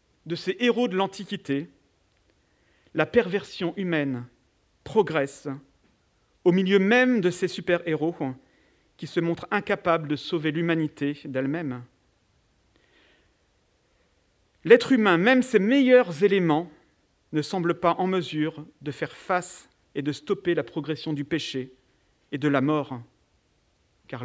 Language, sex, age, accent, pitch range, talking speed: French, male, 40-59, French, 140-200 Hz, 120 wpm